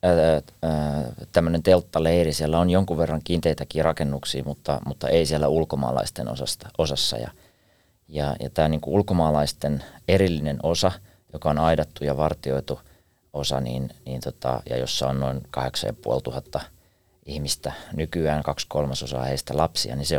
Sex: male